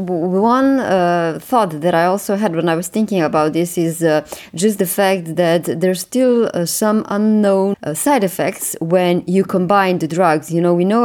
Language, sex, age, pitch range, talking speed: English, female, 30-49, 165-195 Hz, 195 wpm